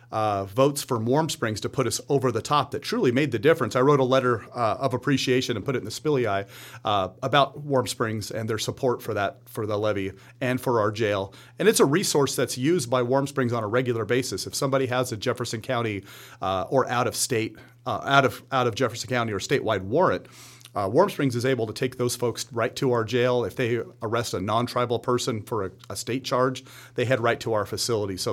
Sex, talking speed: male, 235 wpm